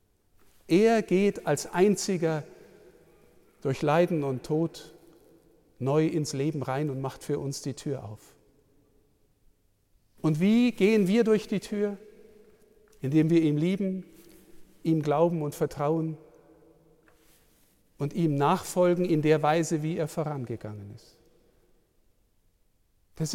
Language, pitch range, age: German, 150-185 Hz, 50-69